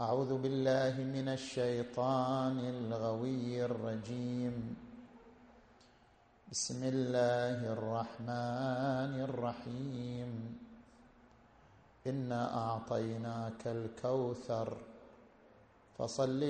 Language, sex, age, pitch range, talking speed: Arabic, male, 50-69, 115-135 Hz, 50 wpm